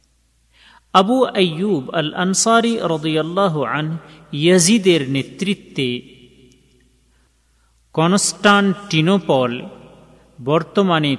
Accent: native